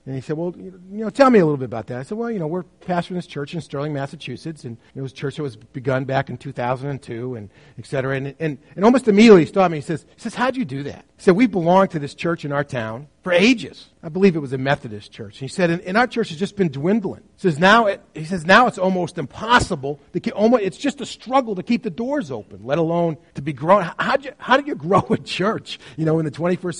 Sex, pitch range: male, 140-200 Hz